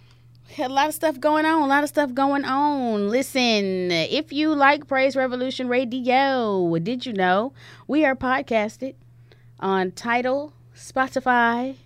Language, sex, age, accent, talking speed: English, female, 30-49, American, 140 wpm